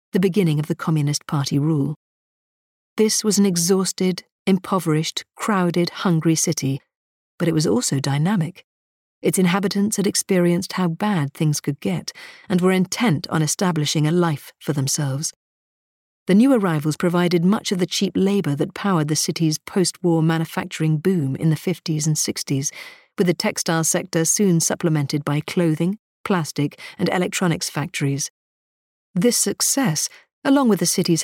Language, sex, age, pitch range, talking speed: English, female, 50-69, 155-195 Hz, 150 wpm